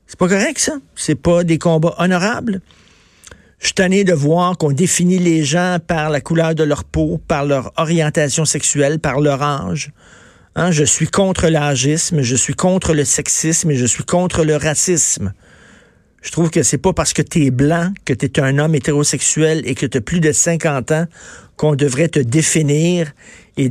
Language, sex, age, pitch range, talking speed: French, male, 50-69, 140-175 Hz, 190 wpm